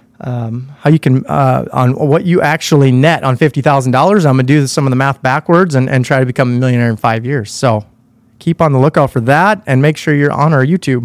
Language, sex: English, male